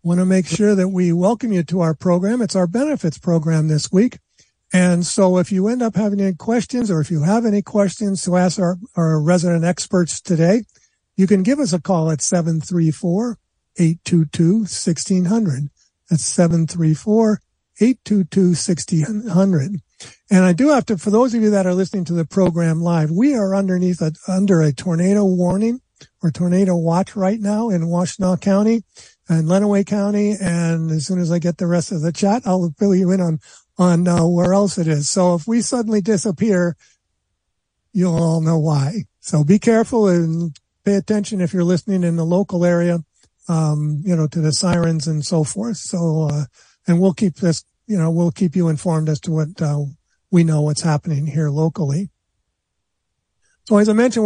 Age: 50-69